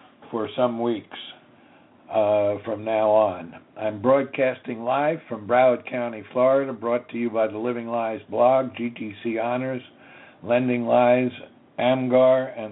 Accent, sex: American, male